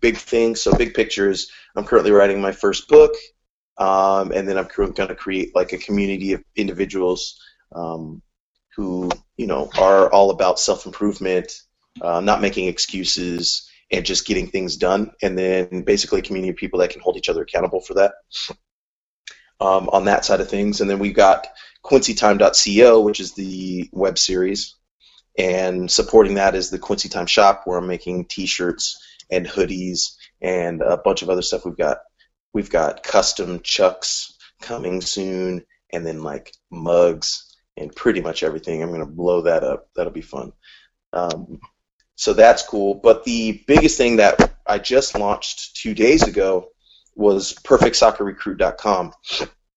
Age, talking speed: 30-49, 160 wpm